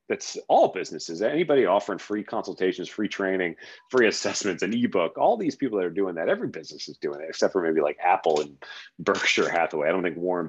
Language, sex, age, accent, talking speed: English, male, 40-59, American, 210 wpm